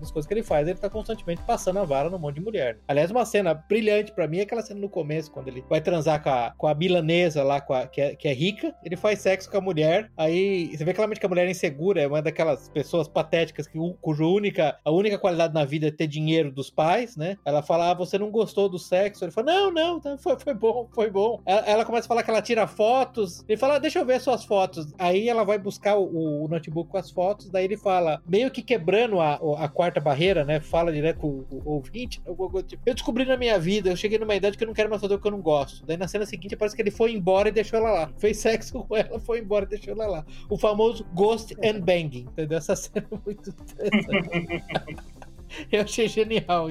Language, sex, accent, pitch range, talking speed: Portuguese, male, Brazilian, 160-215 Hz, 250 wpm